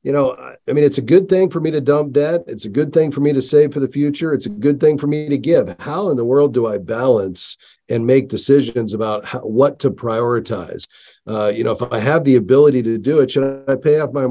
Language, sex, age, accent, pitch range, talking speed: English, male, 40-59, American, 130-165 Hz, 260 wpm